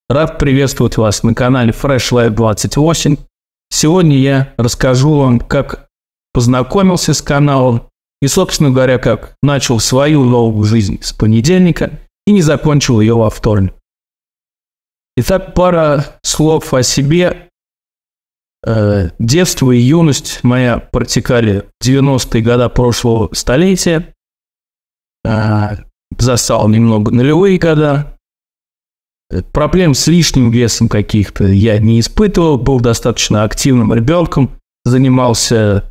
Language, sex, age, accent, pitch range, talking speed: Russian, male, 20-39, native, 110-145 Hz, 105 wpm